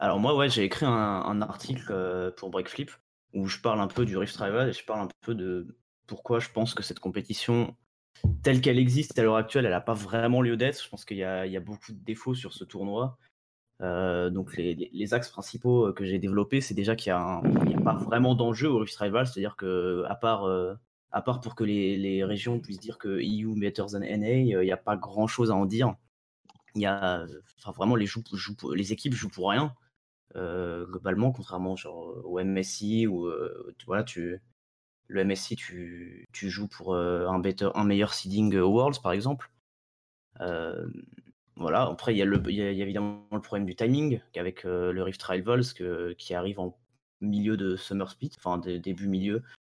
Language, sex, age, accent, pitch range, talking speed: French, male, 20-39, French, 95-115 Hz, 210 wpm